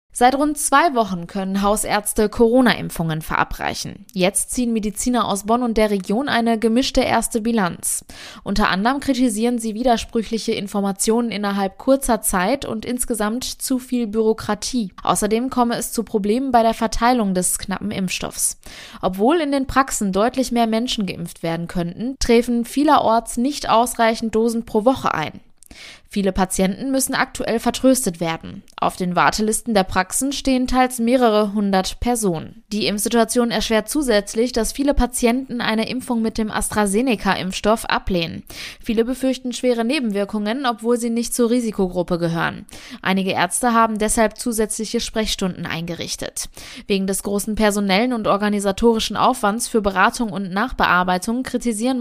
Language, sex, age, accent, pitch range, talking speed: German, female, 20-39, German, 200-240 Hz, 140 wpm